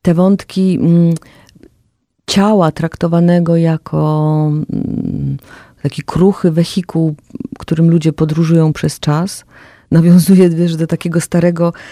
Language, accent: Polish, native